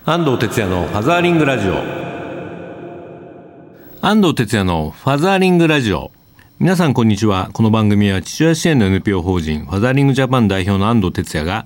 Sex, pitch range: male, 85-125 Hz